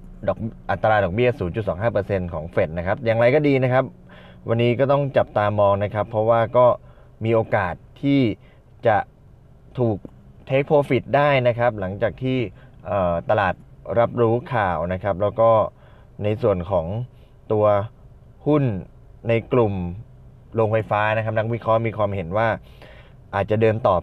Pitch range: 90-115 Hz